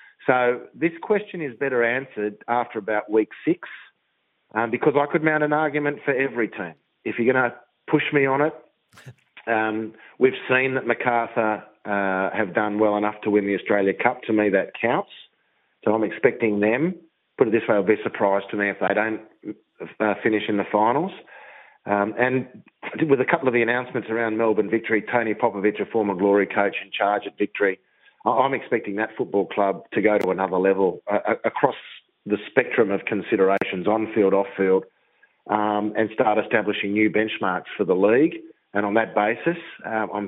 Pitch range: 100-125 Hz